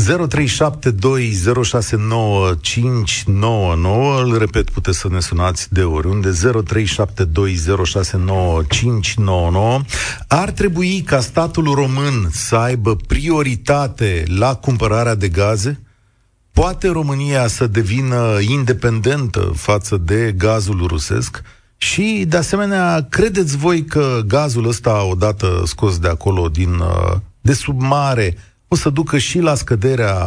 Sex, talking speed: male, 100 wpm